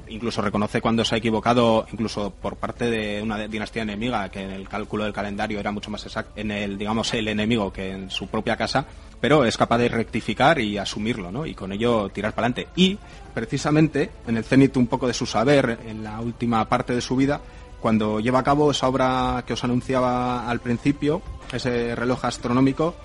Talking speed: 205 wpm